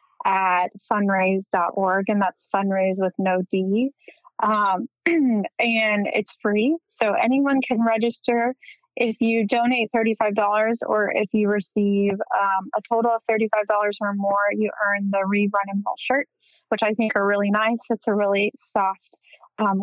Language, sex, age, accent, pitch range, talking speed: English, female, 20-39, American, 200-230 Hz, 150 wpm